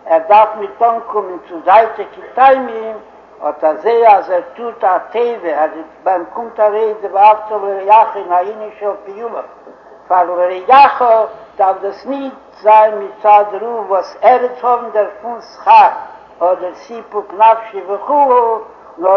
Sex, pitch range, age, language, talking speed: male, 210-245 Hz, 60-79, Hebrew, 105 wpm